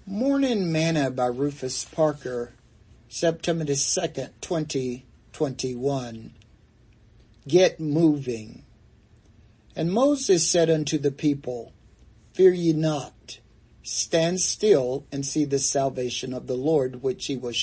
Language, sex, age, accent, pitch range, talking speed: English, male, 60-79, American, 120-160 Hz, 110 wpm